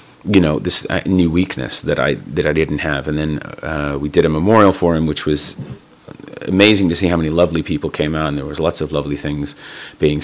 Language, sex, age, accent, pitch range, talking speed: English, male, 30-49, American, 75-90 Hz, 230 wpm